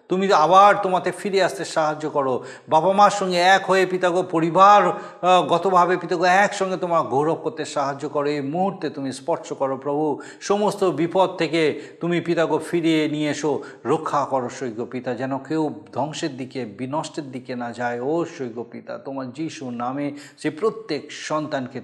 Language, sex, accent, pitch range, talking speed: Bengali, male, native, 115-160 Hz, 155 wpm